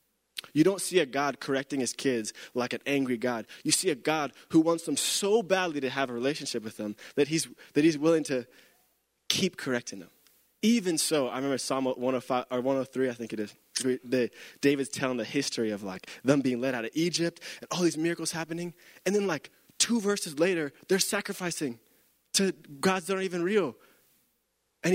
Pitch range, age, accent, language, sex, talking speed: 130-175 Hz, 20-39, American, English, male, 195 wpm